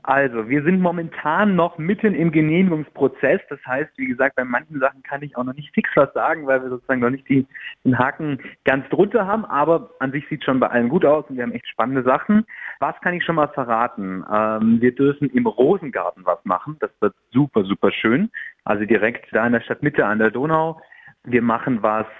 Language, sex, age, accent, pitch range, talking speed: German, male, 30-49, German, 120-155 Hz, 215 wpm